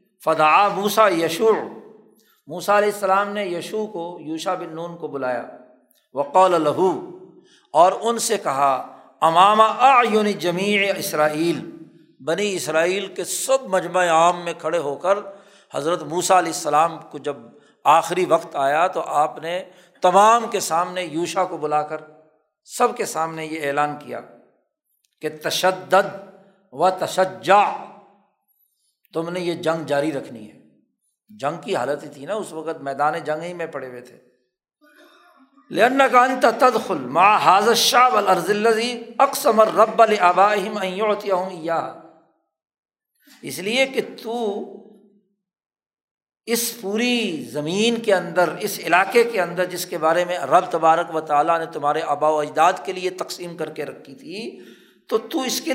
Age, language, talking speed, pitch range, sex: 60-79, Urdu, 135 wpm, 160-210 Hz, male